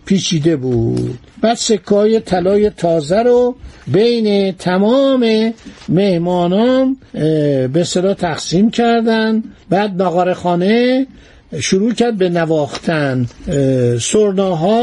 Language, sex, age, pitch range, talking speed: Persian, male, 60-79, 160-215 Hz, 90 wpm